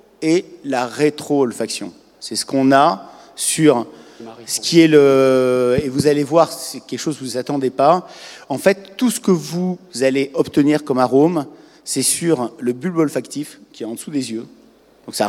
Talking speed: 185 wpm